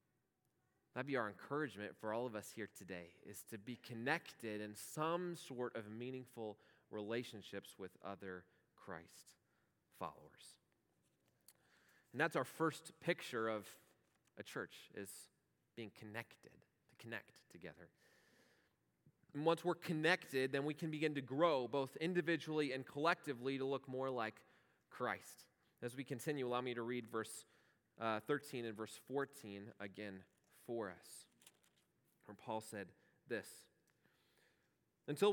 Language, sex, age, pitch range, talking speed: English, male, 20-39, 115-170 Hz, 130 wpm